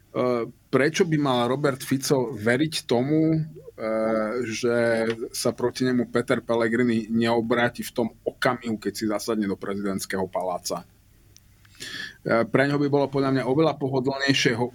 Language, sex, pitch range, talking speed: Slovak, male, 115-140 Hz, 130 wpm